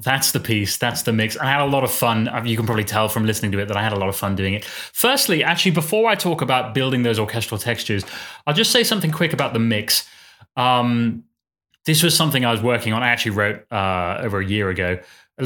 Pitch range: 110-140 Hz